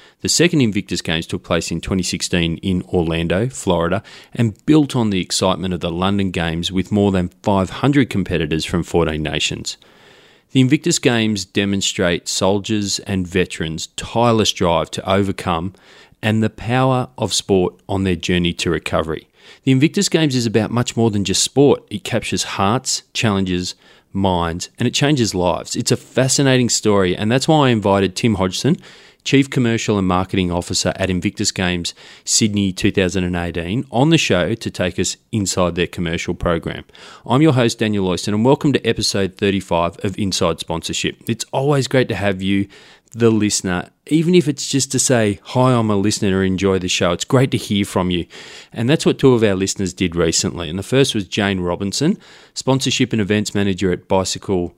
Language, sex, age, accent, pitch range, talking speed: English, male, 30-49, Australian, 90-120 Hz, 175 wpm